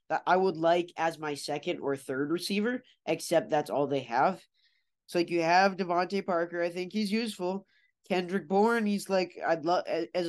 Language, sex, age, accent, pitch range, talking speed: English, male, 20-39, American, 160-185 Hz, 190 wpm